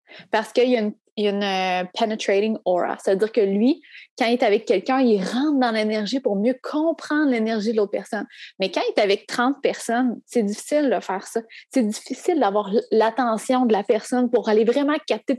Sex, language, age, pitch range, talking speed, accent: female, French, 20-39, 200-250 Hz, 195 wpm, Canadian